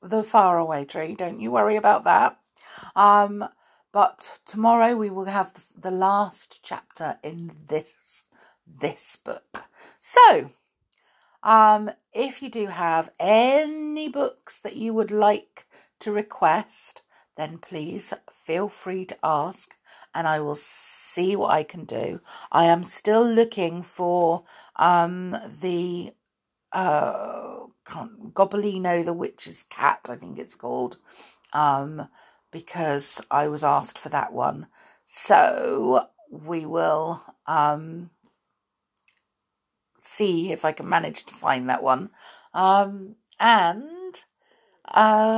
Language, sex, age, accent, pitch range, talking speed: English, female, 50-69, British, 170-225 Hz, 120 wpm